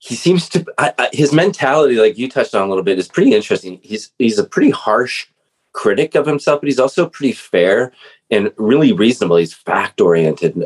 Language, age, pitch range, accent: English, 30-49, 95-145 Hz, American